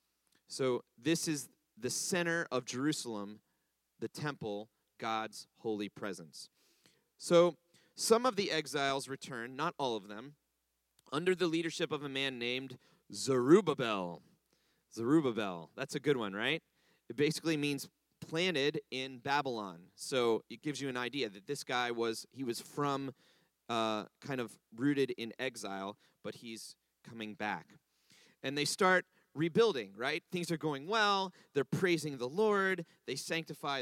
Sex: male